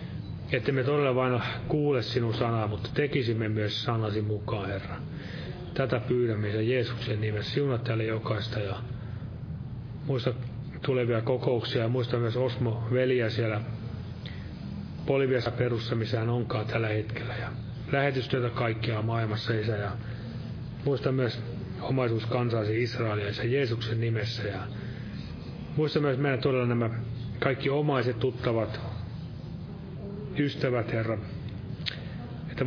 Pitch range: 110-130 Hz